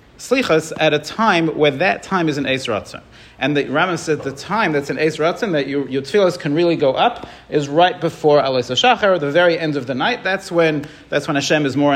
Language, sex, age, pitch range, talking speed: English, male, 40-59, 135-175 Hz, 225 wpm